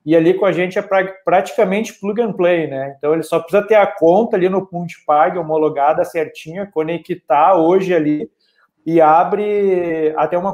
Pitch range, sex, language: 155-190 Hz, male, Portuguese